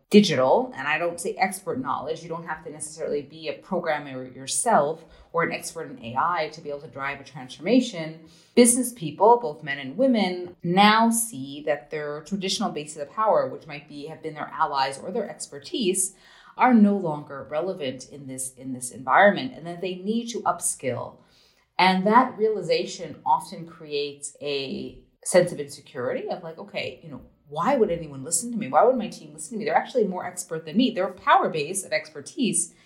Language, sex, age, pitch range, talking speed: English, female, 30-49, 145-215 Hz, 195 wpm